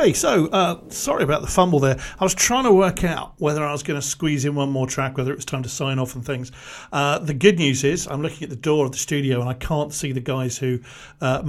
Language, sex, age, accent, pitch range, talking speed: English, male, 50-69, British, 130-160 Hz, 280 wpm